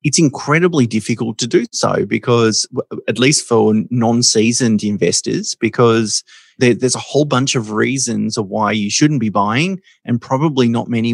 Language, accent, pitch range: English, Australian, 110-125 Hz